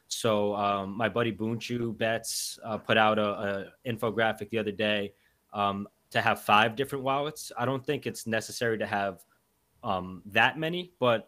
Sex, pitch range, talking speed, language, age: male, 105-120 Hz, 170 wpm, English, 20-39